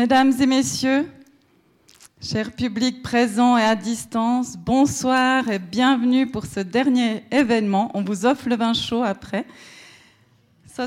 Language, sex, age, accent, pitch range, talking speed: French, female, 30-49, French, 220-260 Hz, 135 wpm